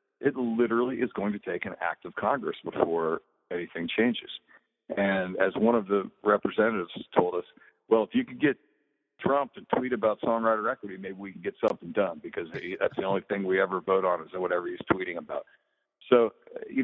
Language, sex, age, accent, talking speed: English, male, 50-69, American, 190 wpm